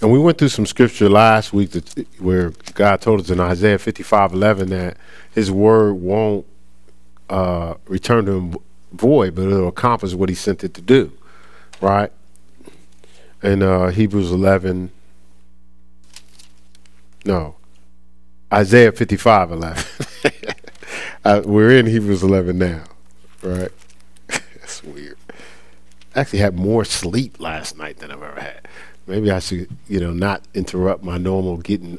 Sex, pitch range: male, 90-110 Hz